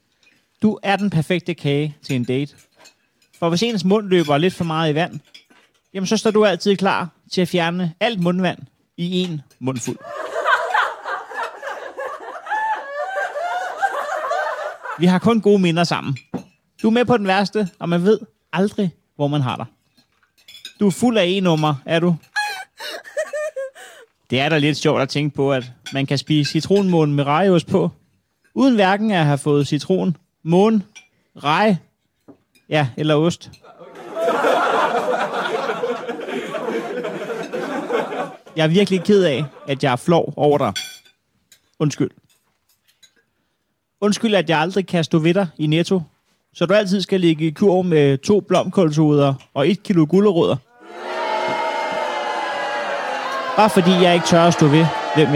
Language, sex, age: Danish, male, 30-49